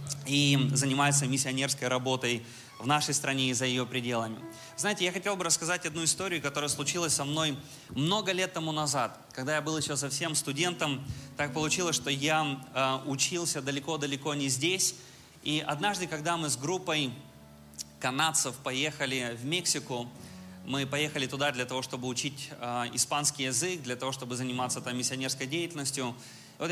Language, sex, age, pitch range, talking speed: Russian, male, 20-39, 130-165 Hz, 150 wpm